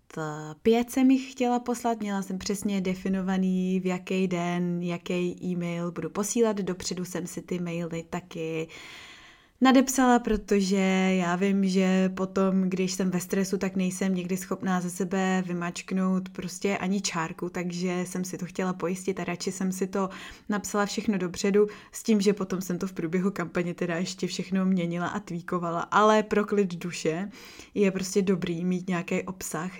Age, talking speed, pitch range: 20-39, 165 wpm, 180-210 Hz